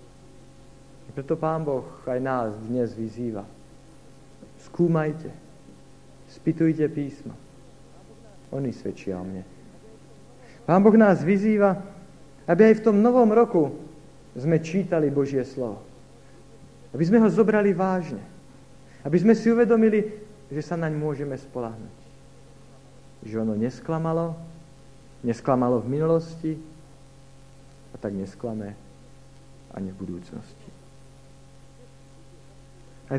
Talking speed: 100 wpm